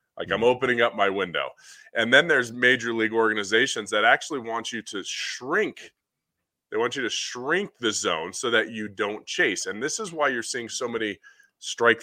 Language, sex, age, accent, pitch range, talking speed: English, male, 20-39, American, 105-150 Hz, 195 wpm